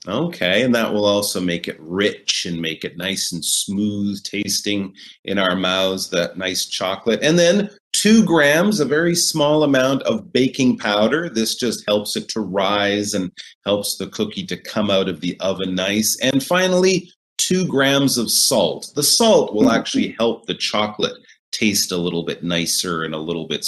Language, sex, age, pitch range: Chinese, male, 30-49, 95-140 Hz